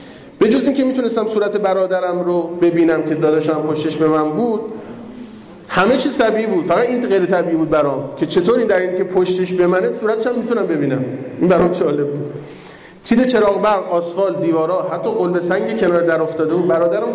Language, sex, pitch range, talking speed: Persian, male, 170-235 Hz, 180 wpm